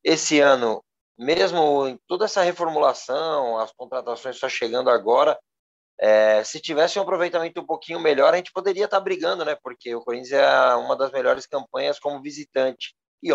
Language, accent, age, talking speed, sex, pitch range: Portuguese, Brazilian, 20-39, 165 wpm, male, 115-140 Hz